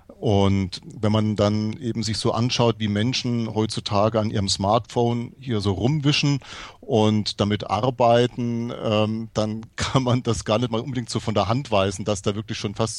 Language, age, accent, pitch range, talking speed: German, 40-59, German, 105-125 Hz, 175 wpm